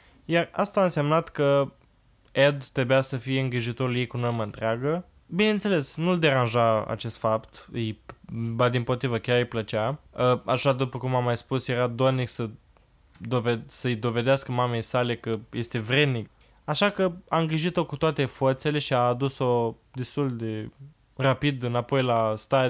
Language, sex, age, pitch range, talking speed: Romanian, male, 20-39, 115-140 Hz, 160 wpm